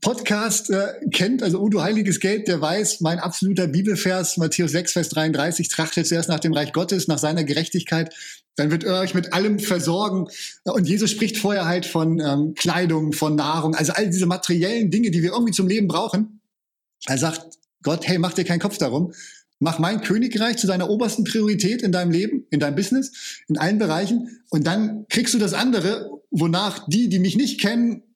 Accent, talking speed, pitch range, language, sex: German, 195 wpm, 170-215 Hz, German, male